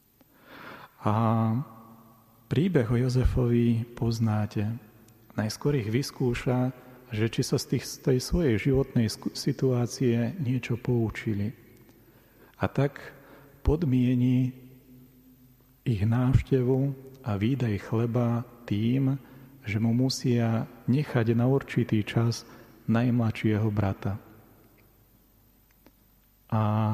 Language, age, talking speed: Slovak, 40-59, 85 wpm